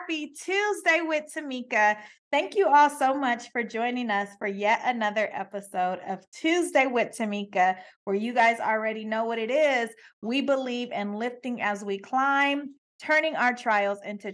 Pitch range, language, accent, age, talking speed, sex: 210-265 Hz, English, American, 30-49, 160 wpm, female